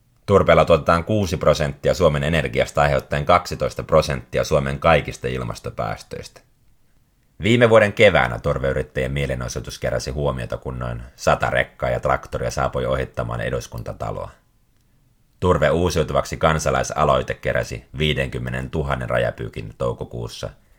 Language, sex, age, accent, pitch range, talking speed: Finnish, male, 30-49, native, 65-85 Hz, 105 wpm